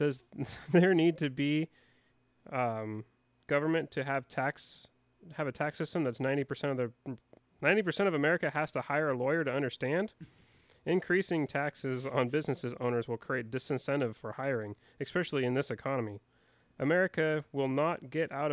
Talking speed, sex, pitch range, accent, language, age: 150 wpm, male, 125-160 Hz, American, English, 30-49